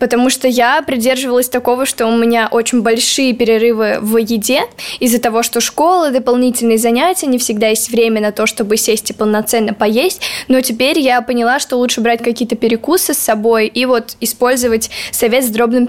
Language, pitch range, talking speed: Russian, 230-260 Hz, 180 wpm